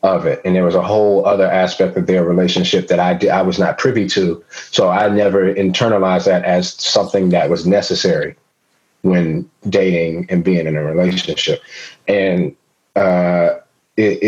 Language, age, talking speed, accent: English, 40-59, 160 wpm, American